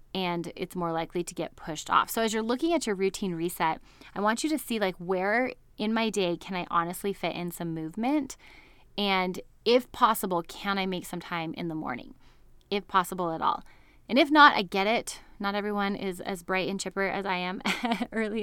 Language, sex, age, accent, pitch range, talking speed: English, female, 20-39, American, 175-230 Hz, 210 wpm